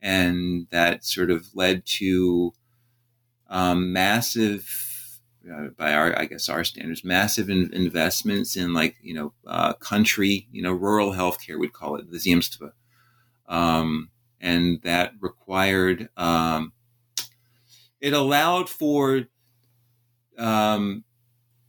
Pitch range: 90-120 Hz